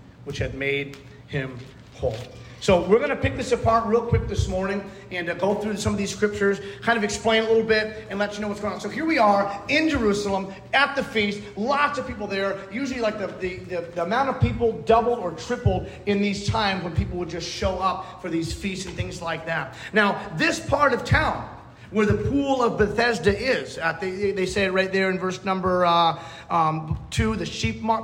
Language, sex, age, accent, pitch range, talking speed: English, male, 40-59, American, 165-215 Hz, 225 wpm